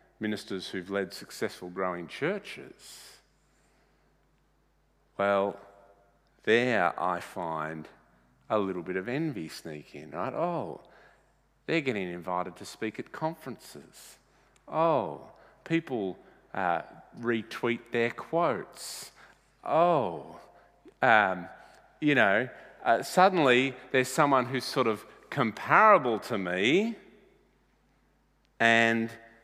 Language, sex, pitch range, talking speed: English, male, 95-125 Hz, 95 wpm